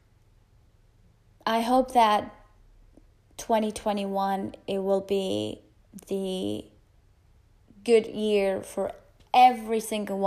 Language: English